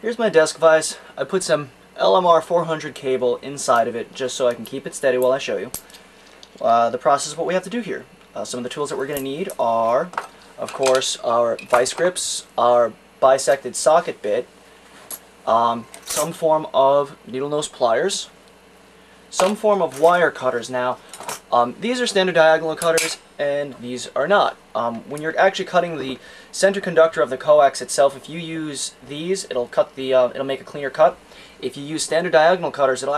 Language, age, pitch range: English, 20-39, 130-165 Hz